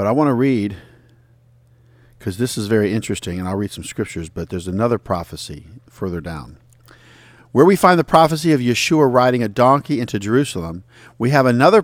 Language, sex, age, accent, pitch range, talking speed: English, male, 50-69, American, 110-140 Hz, 180 wpm